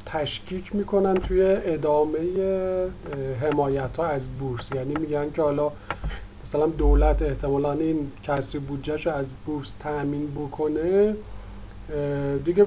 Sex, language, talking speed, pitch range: male, Persian, 110 wpm, 140-175 Hz